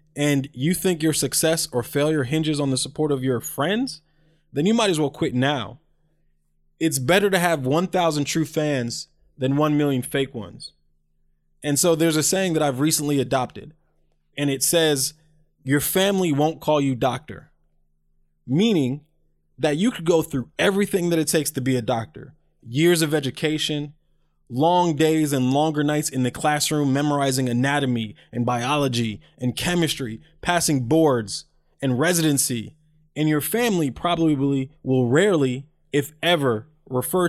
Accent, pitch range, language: American, 125-160 Hz, English